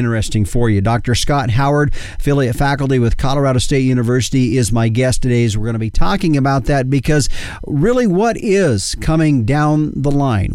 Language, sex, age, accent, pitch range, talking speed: English, male, 40-59, American, 115-150 Hz, 180 wpm